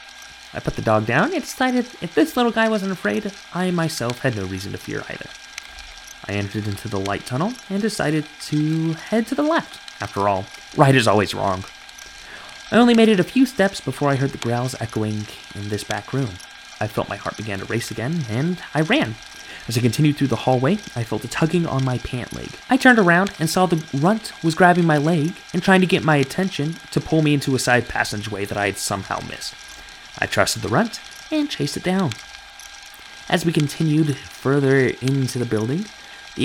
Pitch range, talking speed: 115-185 Hz, 210 wpm